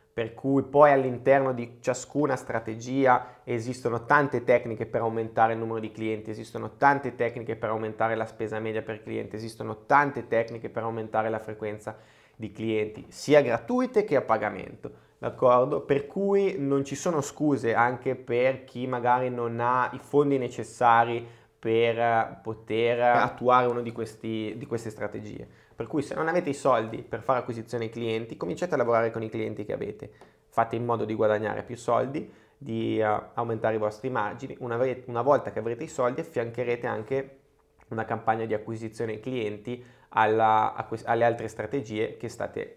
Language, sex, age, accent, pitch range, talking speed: Italian, male, 20-39, native, 110-130 Hz, 160 wpm